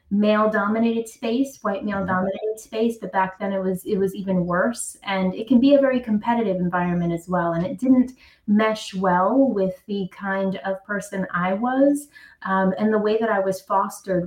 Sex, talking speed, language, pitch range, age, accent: female, 195 wpm, English, 185-220 Hz, 20-39, American